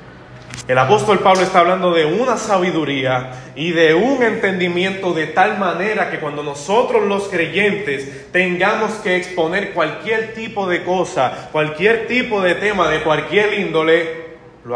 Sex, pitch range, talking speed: male, 150-195 Hz, 140 wpm